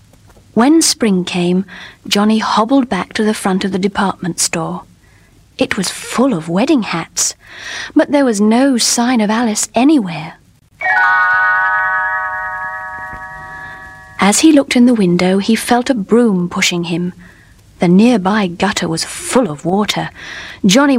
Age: 30-49